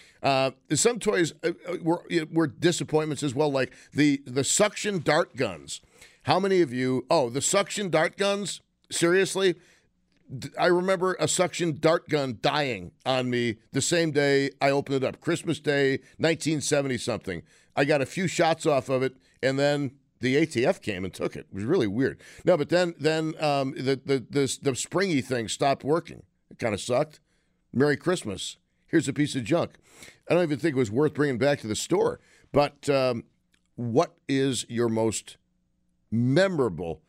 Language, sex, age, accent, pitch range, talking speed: English, male, 50-69, American, 130-160 Hz, 175 wpm